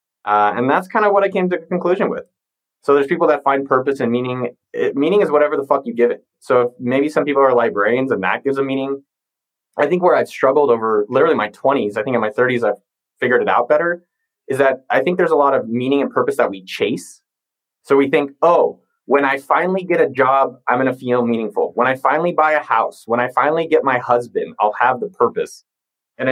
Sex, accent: male, American